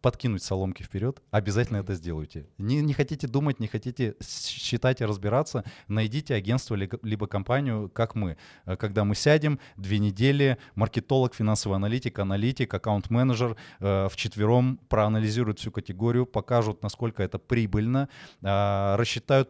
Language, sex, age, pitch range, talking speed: Russian, male, 20-39, 105-130 Hz, 130 wpm